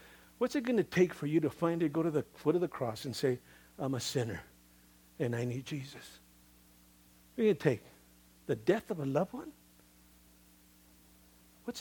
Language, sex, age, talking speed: English, male, 50-69, 195 wpm